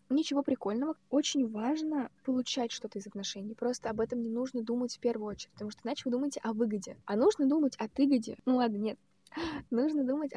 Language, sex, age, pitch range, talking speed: Russian, female, 20-39, 210-260 Hz, 195 wpm